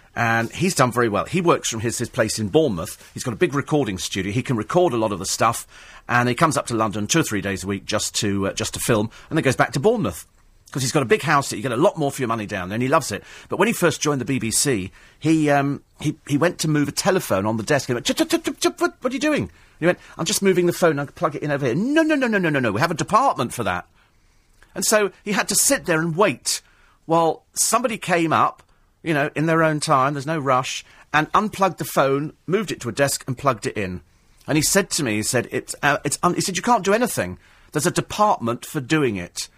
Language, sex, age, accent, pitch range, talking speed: English, male, 40-59, British, 110-175 Hz, 275 wpm